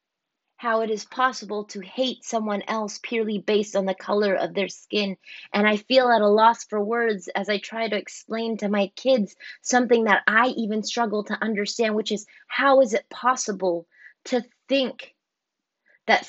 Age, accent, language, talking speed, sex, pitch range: 20-39, American, English, 175 wpm, female, 210-250 Hz